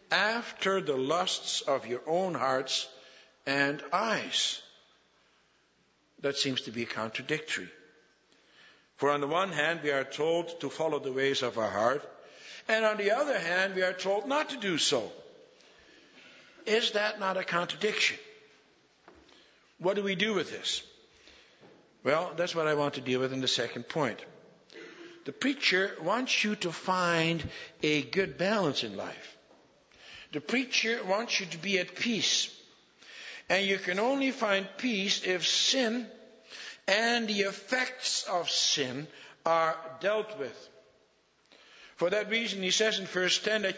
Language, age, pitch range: English, 60-79, 165-220 Hz